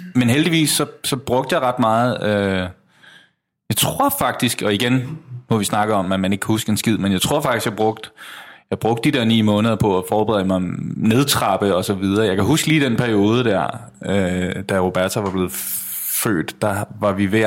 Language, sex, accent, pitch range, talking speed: English, male, Danish, 100-130 Hz, 215 wpm